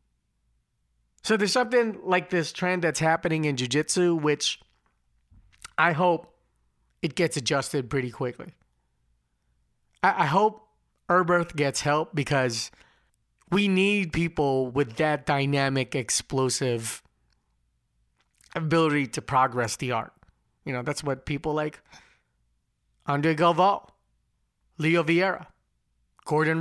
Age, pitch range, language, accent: 30-49, 140-180 Hz, English, American